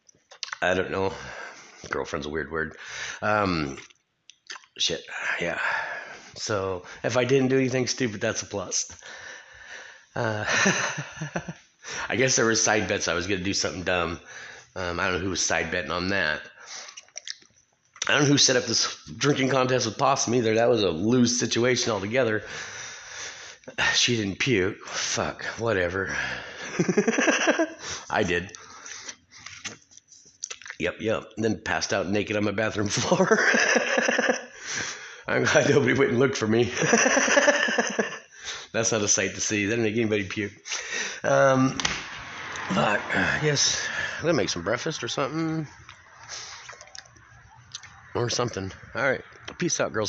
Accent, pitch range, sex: American, 105-145 Hz, male